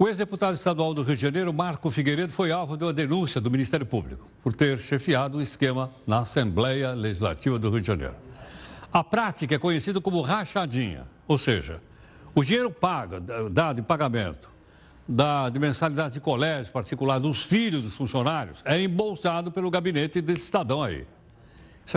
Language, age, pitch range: Portuguese, 60-79, 125-180 Hz